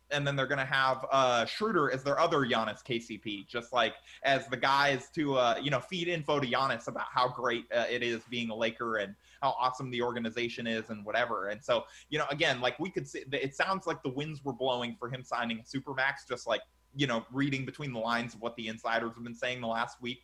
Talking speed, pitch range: 235 wpm, 120-145 Hz